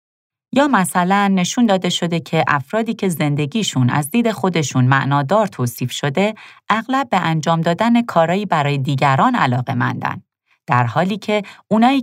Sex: female